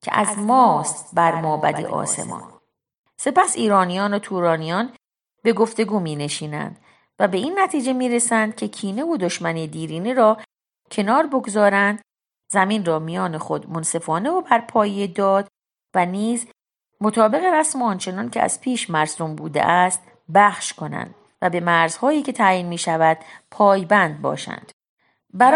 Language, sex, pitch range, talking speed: Persian, female, 165-245 Hz, 135 wpm